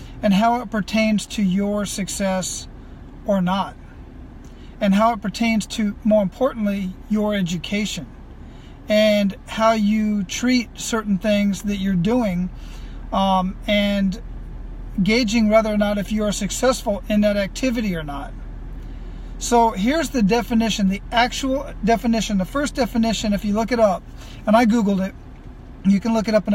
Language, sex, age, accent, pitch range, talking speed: English, male, 40-59, American, 195-225 Hz, 150 wpm